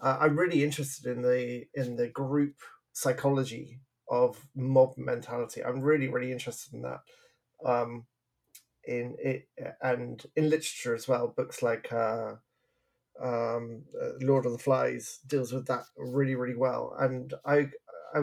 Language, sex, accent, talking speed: English, male, British, 145 wpm